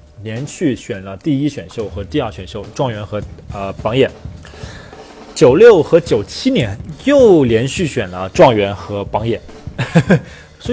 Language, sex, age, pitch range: Chinese, male, 20-39, 100-130 Hz